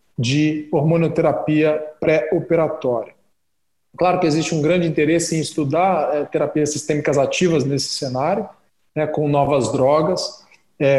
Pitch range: 145-170 Hz